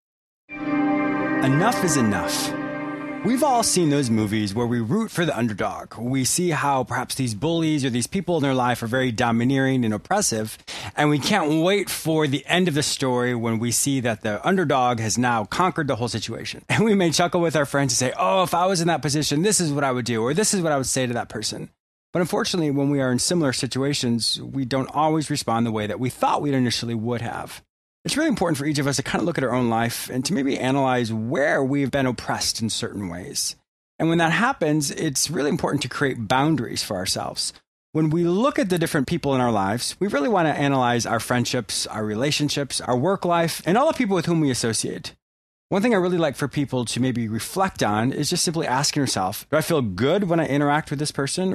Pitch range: 125-165 Hz